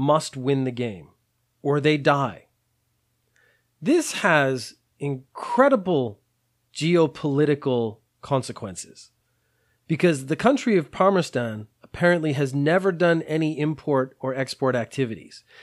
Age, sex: 30-49, male